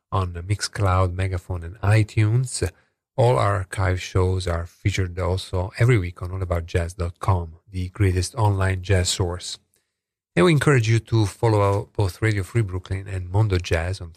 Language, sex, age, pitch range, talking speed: English, male, 40-59, 90-110 Hz, 155 wpm